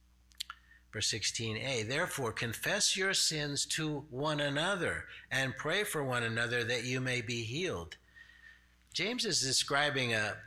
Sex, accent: male, American